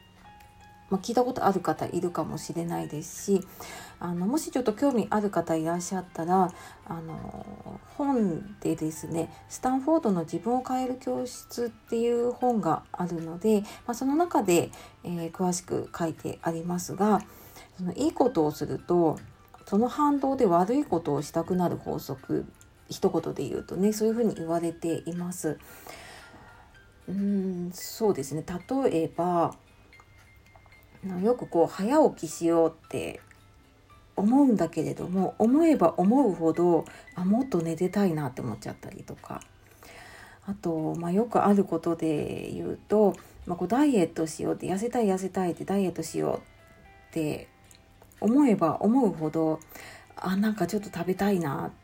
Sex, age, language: female, 40-59, Japanese